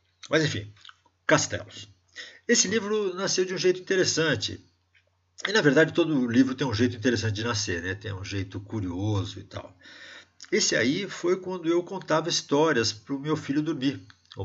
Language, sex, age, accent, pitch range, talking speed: Portuguese, male, 50-69, Brazilian, 100-155 Hz, 170 wpm